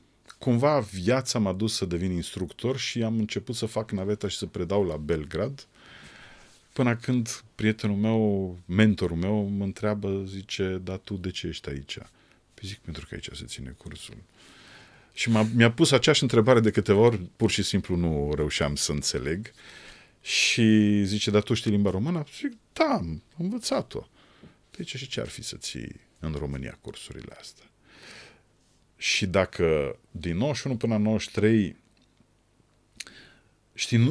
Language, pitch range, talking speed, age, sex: Romanian, 95-120 Hz, 160 wpm, 40-59, male